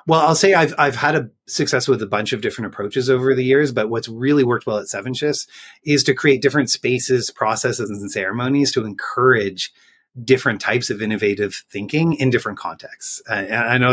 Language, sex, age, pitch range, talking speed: English, male, 30-49, 110-140 Hz, 200 wpm